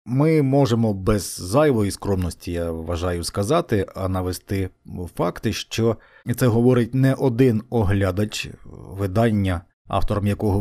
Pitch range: 105-140 Hz